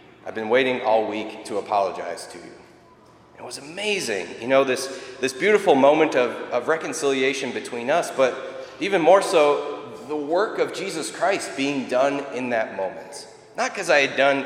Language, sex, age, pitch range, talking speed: English, male, 30-49, 120-145 Hz, 175 wpm